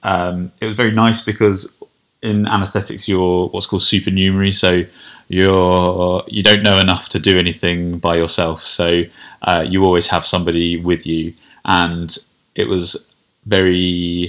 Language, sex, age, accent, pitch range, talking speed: English, male, 20-39, British, 85-100 Hz, 160 wpm